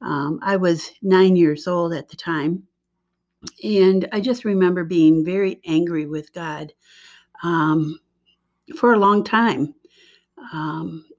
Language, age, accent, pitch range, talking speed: English, 60-79, American, 180-225 Hz, 130 wpm